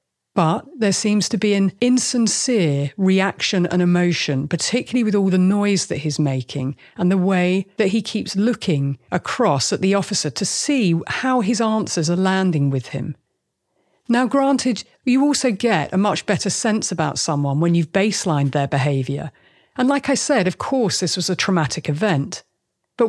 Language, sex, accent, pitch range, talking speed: English, female, British, 160-220 Hz, 170 wpm